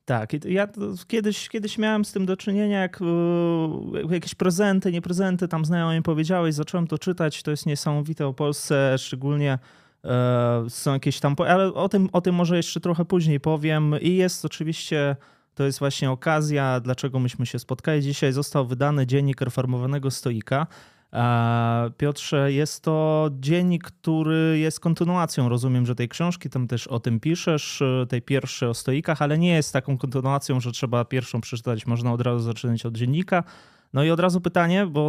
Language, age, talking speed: Polish, 20-39, 165 wpm